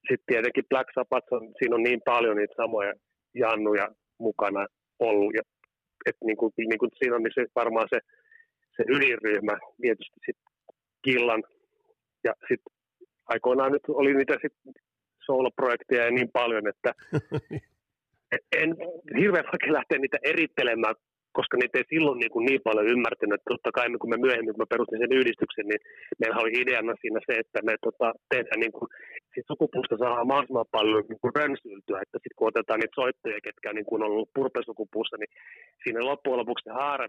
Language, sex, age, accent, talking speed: Finnish, male, 30-49, native, 160 wpm